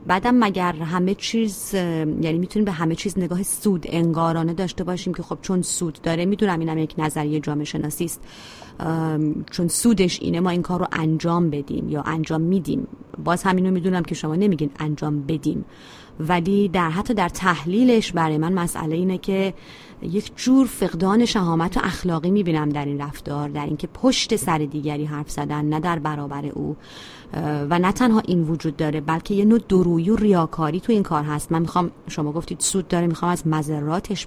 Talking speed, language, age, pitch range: 180 wpm, Persian, 30-49, 155-190 Hz